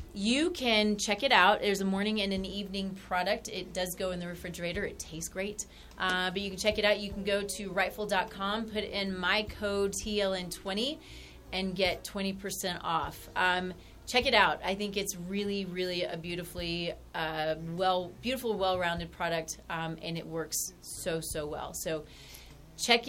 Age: 30-49